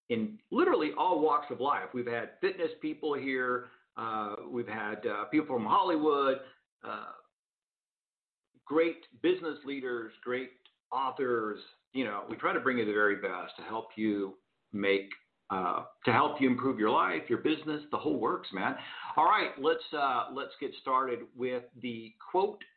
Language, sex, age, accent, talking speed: English, male, 50-69, American, 160 wpm